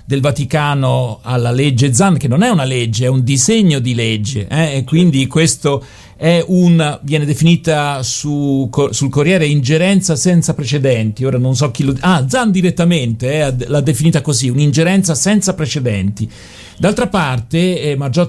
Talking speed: 160 wpm